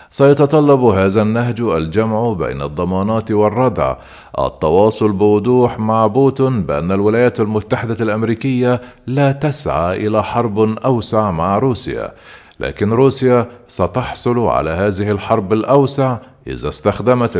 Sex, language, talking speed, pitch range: male, Arabic, 105 wpm, 105-125 Hz